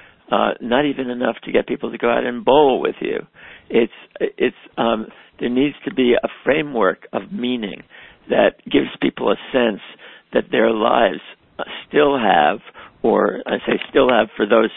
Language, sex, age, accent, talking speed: English, male, 60-79, American, 170 wpm